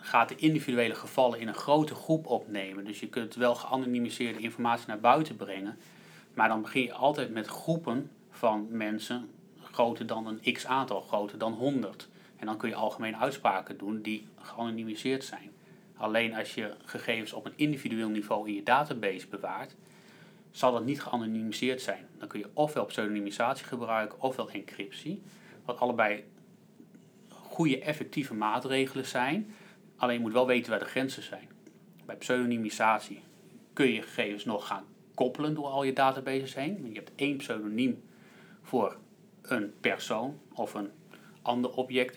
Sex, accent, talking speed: male, Dutch, 155 wpm